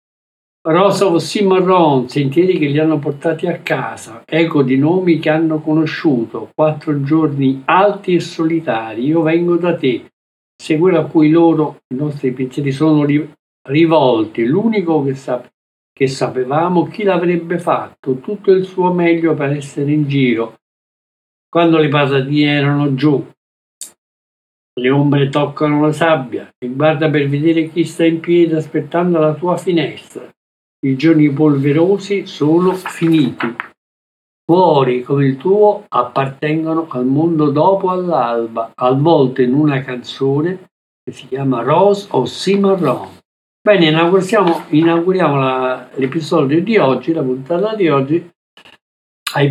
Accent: native